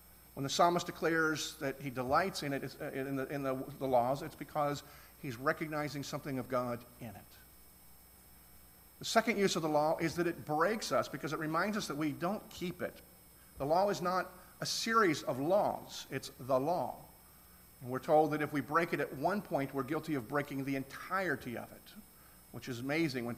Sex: male